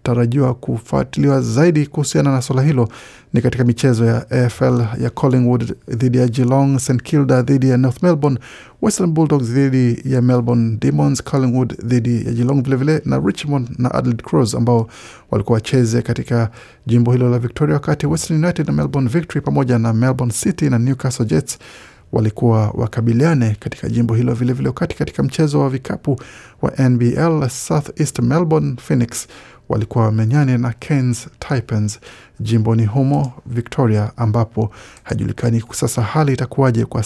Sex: male